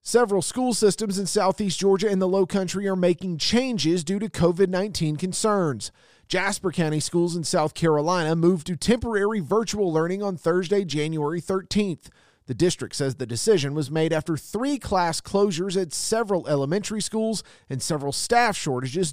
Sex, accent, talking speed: male, American, 160 wpm